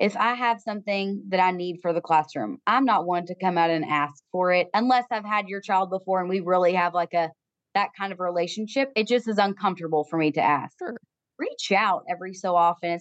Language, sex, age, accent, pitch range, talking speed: English, female, 20-39, American, 180-220 Hz, 235 wpm